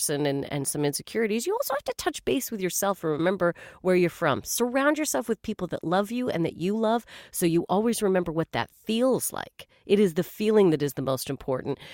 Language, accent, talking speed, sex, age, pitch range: English, American, 225 wpm, female, 40-59, 170-235 Hz